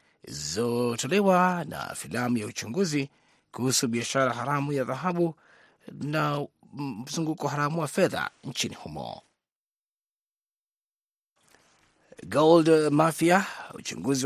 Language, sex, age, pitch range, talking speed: Swahili, male, 30-49, 125-165 Hz, 85 wpm